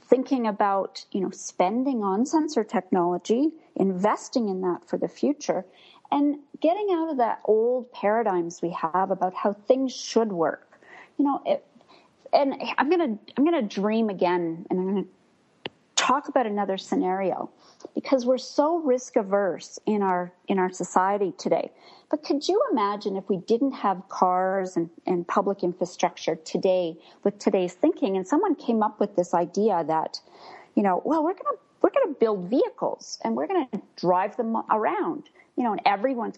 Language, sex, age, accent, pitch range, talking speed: English, female, 40-59, American, 190-280 Hz, 170 wpm